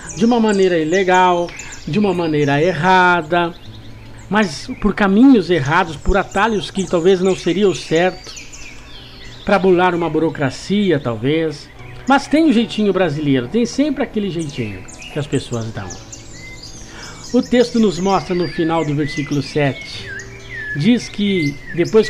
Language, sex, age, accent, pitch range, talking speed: Portuguese, male, 60-79, Brazilian, 125-195 Hz, 135 wpm